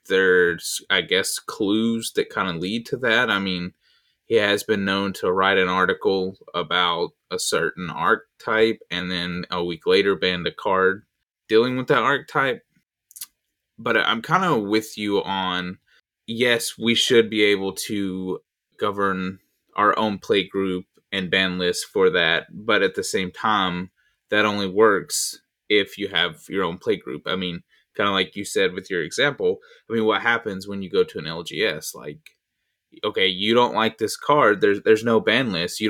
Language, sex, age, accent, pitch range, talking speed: English, male, 20-39, American, 95-130 Hz, 180 wpm